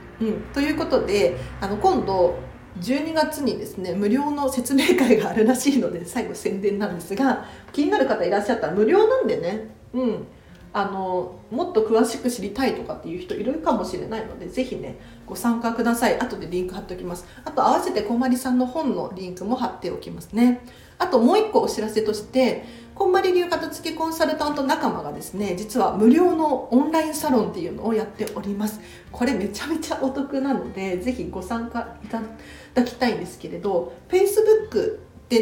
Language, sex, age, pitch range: Japanese, female, 40-59, 205-265 Hz